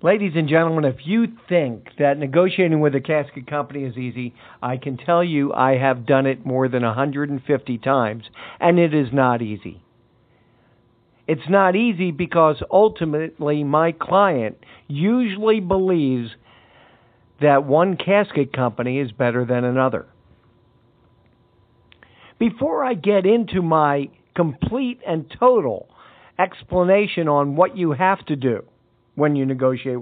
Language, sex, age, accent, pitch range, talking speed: English, male, 50-69, American, 125-185 Hz, 130 wpm